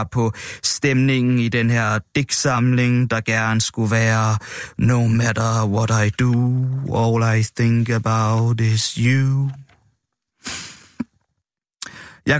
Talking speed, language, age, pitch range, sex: 105 wpm, Danish, 20-39, 120-140 Hz, male